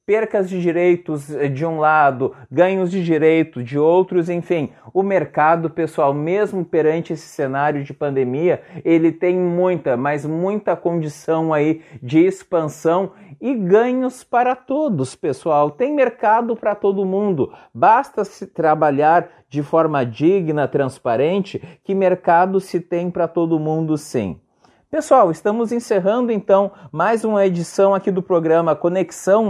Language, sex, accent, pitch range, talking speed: Portuguese, male, Brazilian, 155-195 Hz, 135 wpm